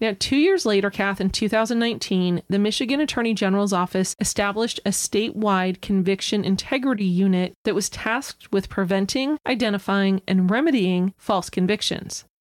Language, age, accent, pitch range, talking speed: English, 30-49, American, 190-230 Hz, 135 wpm